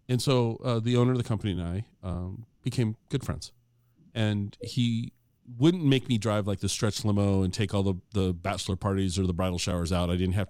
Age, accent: 40-59, American